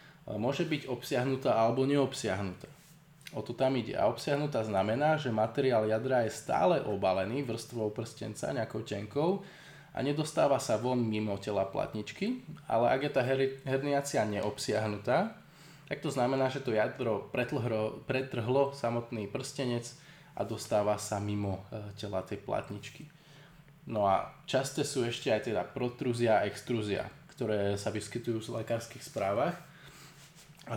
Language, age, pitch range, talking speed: Slovak, 20-39, 110-145 Hz, 140 wpm